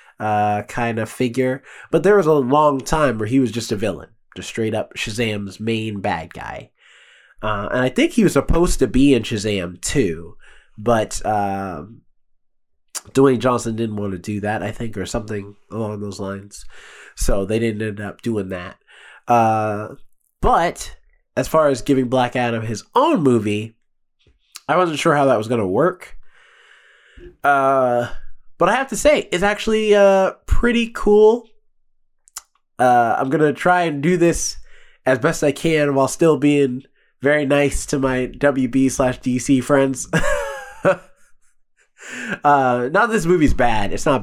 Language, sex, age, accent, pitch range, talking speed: English, male, 20-39, American, 110-150 Hz, 160 wpm